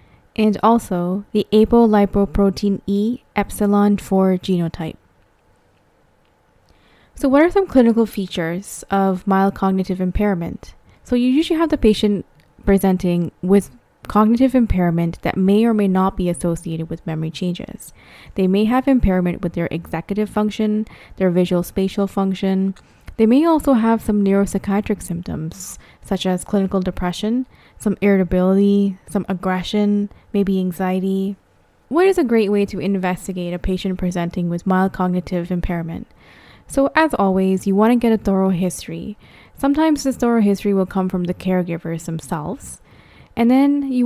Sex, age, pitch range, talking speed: female, 20-39, 180-215 Hz, 140 wpm